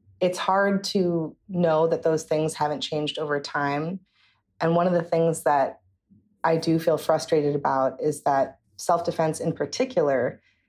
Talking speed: 150 wpm